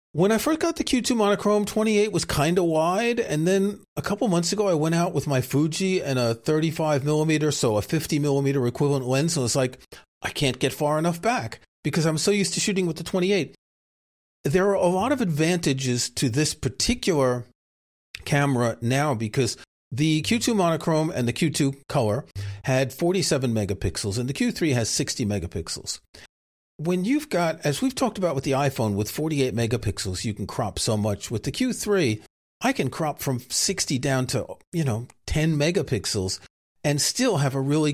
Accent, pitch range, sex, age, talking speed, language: American, 120-180 Hz, male, 40-59, 185 wpm, English